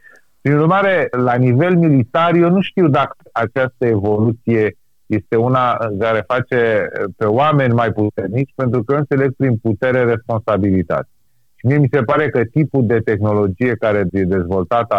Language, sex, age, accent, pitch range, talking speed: Romanian, male, 30-49, native, 105-135 Hz, 150 wpm